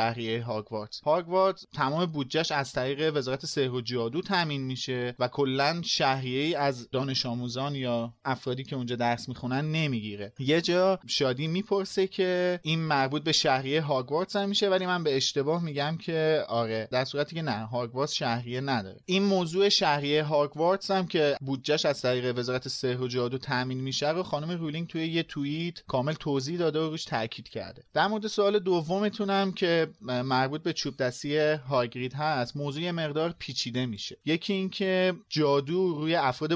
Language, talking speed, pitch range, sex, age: Persian, 165 wpm, 125-165 Hz, male, 30-49